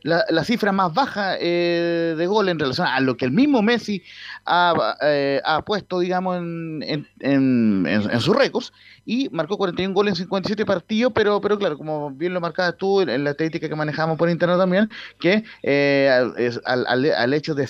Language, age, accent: Spanish, 30-49, Venezuelan